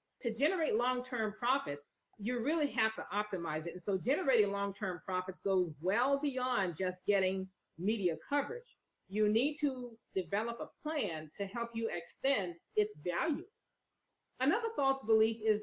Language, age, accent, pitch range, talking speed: English, 40-59, American, 195-275 Hz, 155 wpm